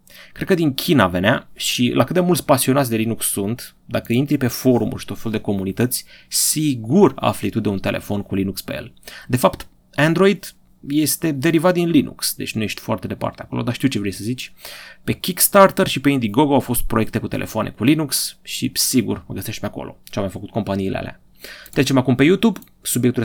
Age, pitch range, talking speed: 30-49, 100-135 Hz, 205 wpm